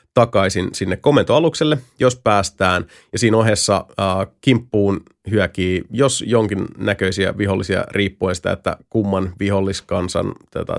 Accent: native